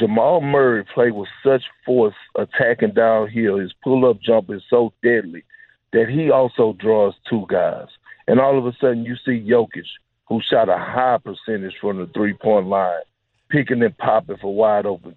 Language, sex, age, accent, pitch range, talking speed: English, male, 50-69, American, 115-140 Hz, 165 wpm